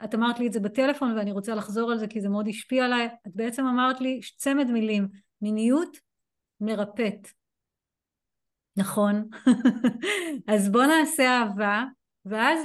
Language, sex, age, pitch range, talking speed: Hebrew, female, 30-49, 205-255 Hz, 140 wpm